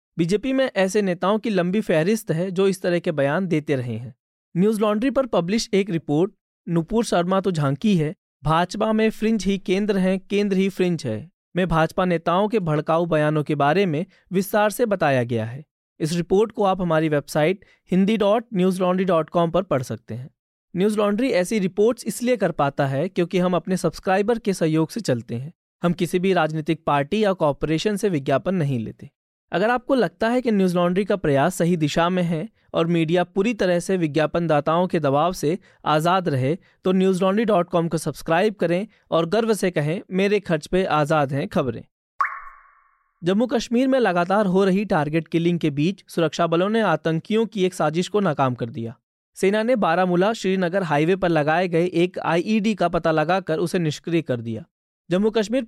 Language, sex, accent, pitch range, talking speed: Hindi, male, native, 160-200 Hz, 180 wpm